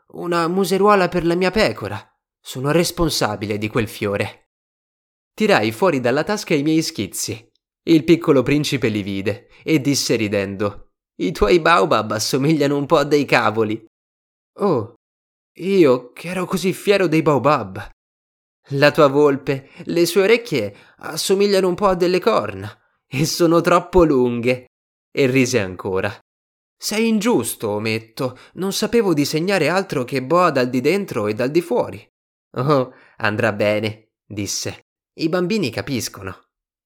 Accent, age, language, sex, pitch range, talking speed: native, 20-39, Italian, male, 105-170 Hz, 140 wpm